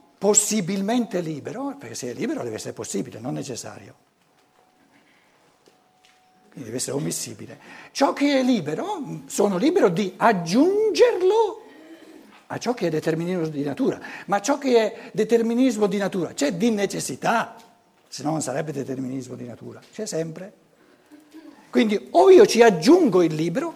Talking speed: 140 wpm